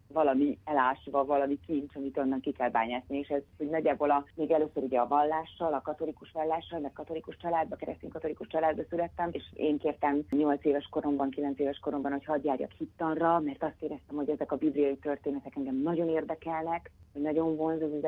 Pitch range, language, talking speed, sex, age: 140-165 Hz, Hungarian, 185 wpm, female, 30-49